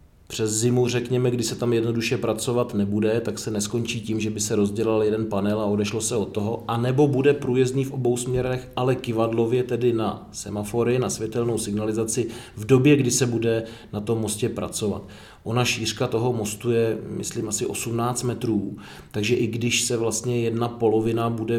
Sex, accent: male, native